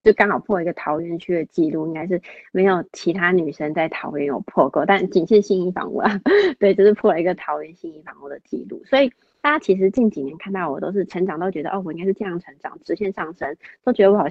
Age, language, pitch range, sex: 20-39, Chinese, 180-230 Hz, female